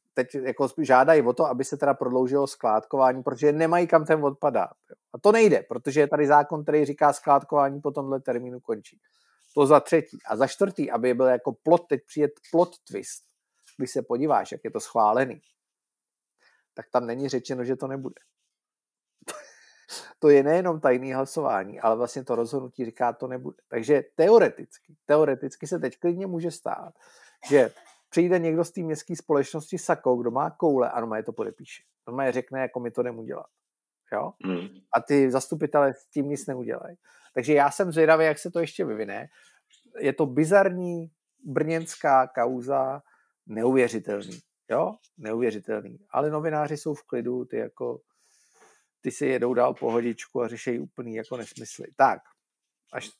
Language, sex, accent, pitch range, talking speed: Czech, male, native, 125-160 Hz, 160 wpm